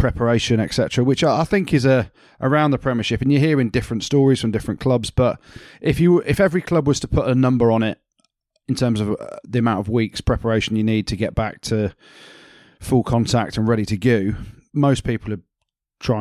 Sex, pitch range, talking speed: male, 110-125 Hz, 205 wpm